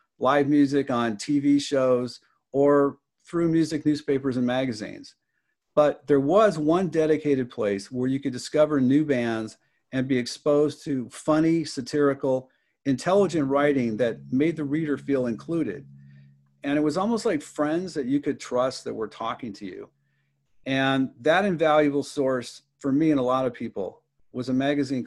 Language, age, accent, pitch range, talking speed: English, 50-69, American, 125-150 Hz, 160 wpm